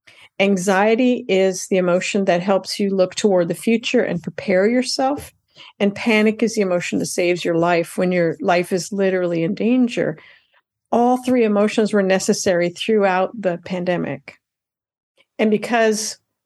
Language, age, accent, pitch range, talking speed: English, 50-69, American, 185-225 Hz, 145 wpm